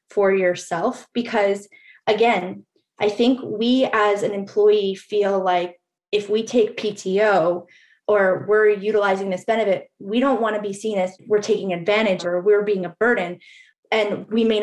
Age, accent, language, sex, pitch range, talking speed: 20-39, American, English, female, 200-235 Hz, 160 wpm